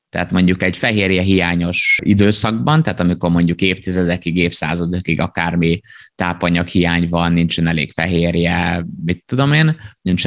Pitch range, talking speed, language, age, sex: 85-100 Hz, 130 wpm, Hungarian, 20-39, male